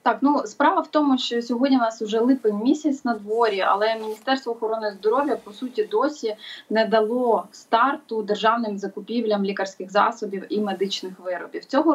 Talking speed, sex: 160 wpm, female